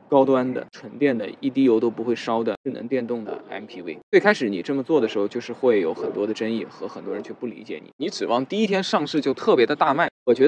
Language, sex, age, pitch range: Chinese, male, 20-39, 115-150 Hz